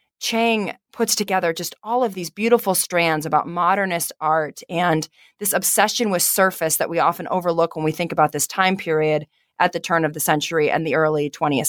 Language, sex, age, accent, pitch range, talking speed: English, female, 30-49, American, 160-200 Hz, 195 wpm